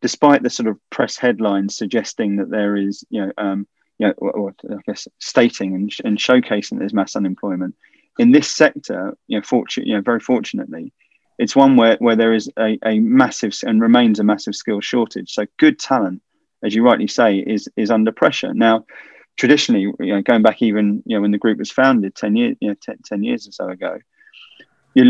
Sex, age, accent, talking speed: male, 20-39, British, 210 wpm